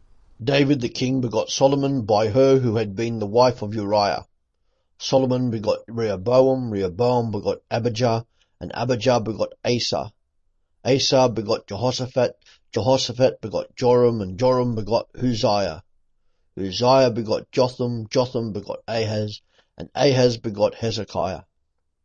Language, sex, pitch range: English, male, 105-125 Hz